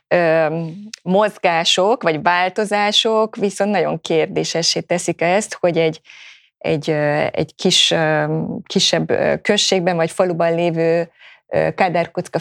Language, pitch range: Hungarian, 165-190 Hz